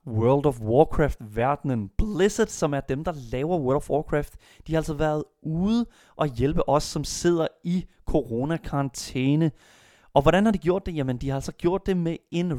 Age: 30-49